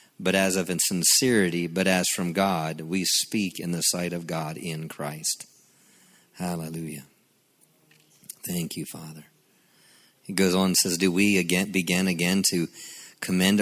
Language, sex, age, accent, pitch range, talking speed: English, male, 40-59, American, 90-105 Hz, 145 wpm